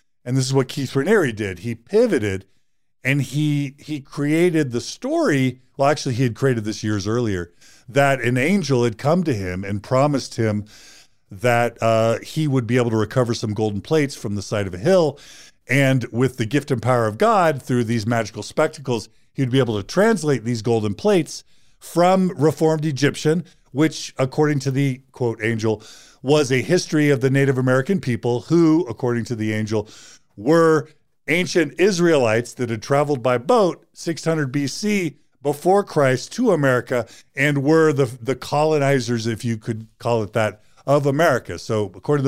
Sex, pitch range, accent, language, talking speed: male, 115-150 Hz, American, English, 175 wpm